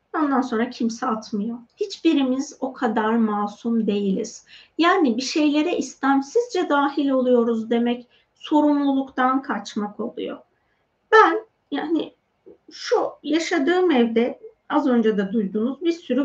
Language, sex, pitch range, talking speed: Turkish, female, 225-315 Hz, 110 wpm